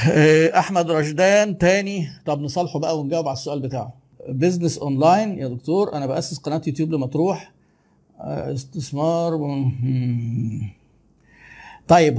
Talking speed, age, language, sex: 115 wpm, 50-69, Arabic, male